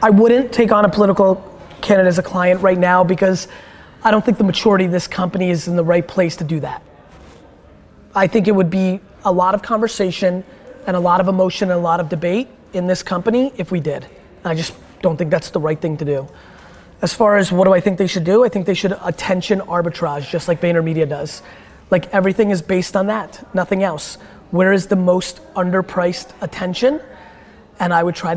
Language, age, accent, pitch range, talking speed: English, 20-39, American, 175-200 Hz, 215 wpm